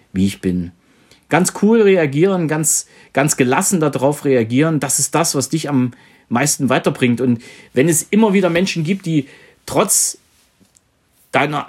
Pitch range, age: 120-160 Hz, 40-59